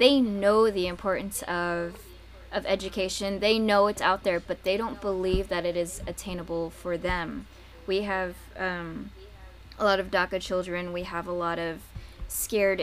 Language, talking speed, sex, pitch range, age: English, 170 wpm, female, 175-205 Hz, 10-29